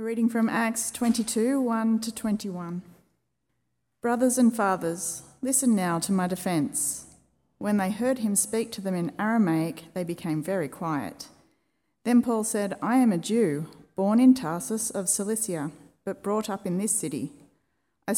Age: 40-59